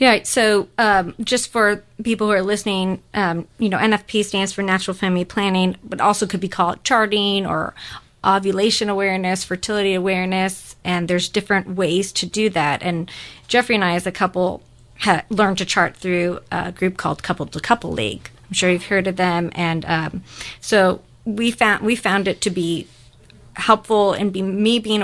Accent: American